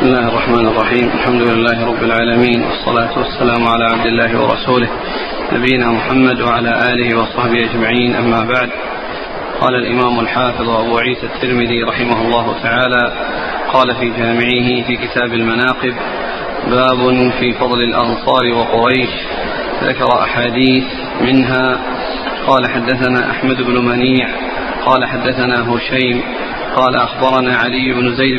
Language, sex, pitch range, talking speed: Arabic, male, 120-130 Hz, 125 wpm